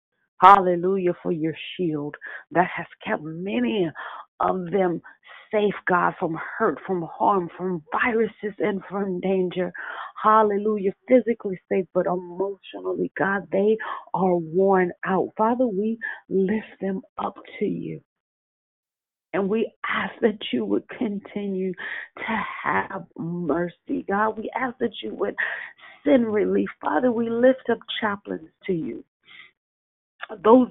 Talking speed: 125 wpm